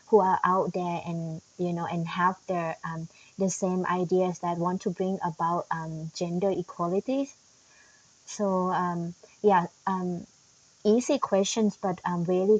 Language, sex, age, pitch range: English, female, 20-39, 170-205 Hz